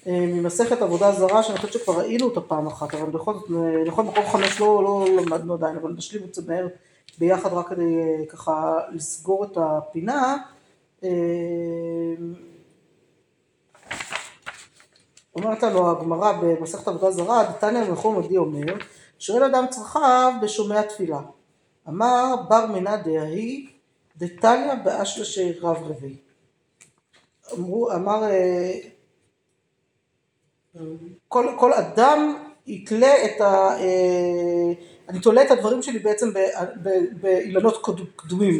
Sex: female